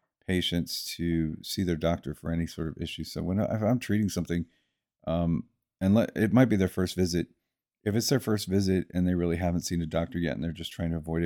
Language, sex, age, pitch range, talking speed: English, male, 40-59, 80-95 Hz, 240 wpm